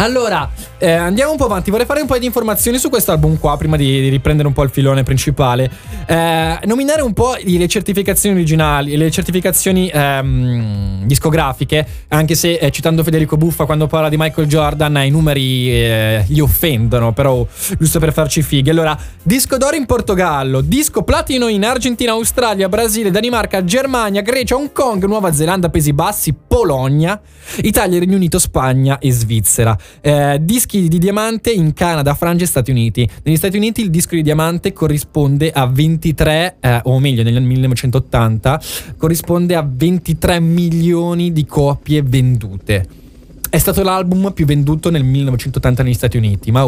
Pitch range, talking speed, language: 130-185 Hz, 160 wpm, Italian